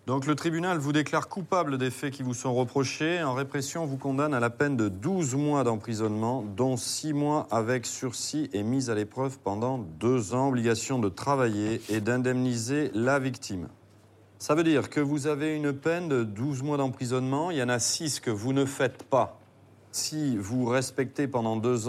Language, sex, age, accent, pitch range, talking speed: French, male, 40-59, French, 105-135 Hz, 190 wpm